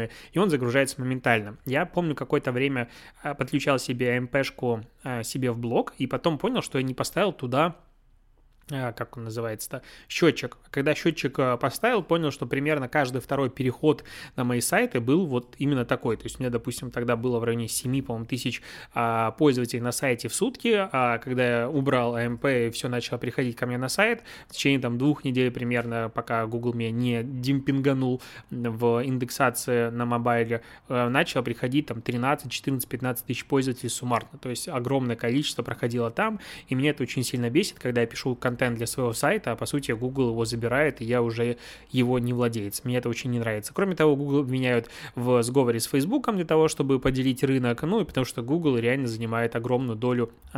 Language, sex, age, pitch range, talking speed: Russian, male, 20-39, 120-140 Hz, 185 wpm